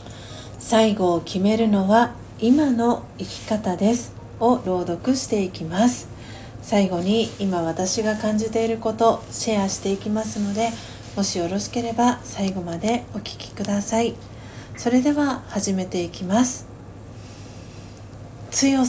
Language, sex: Japanese, female